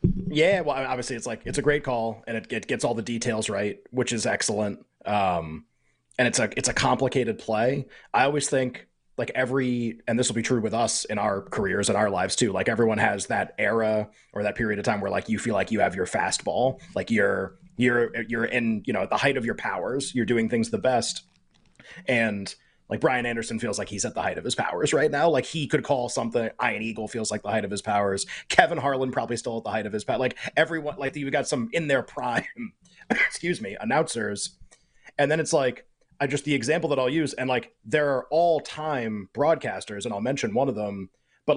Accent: American